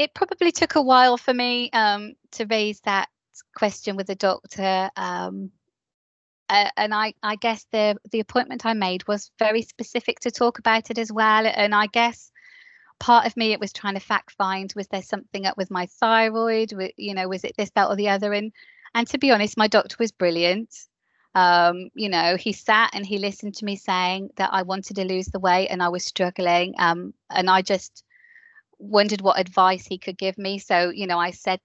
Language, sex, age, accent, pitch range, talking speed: English, female, 20-39, British, 185-220 Hz, 210 wpm